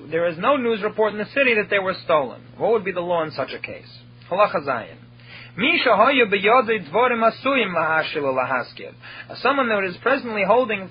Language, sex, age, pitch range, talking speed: English, male, 30-49, 185-250 Hz, 180 wpm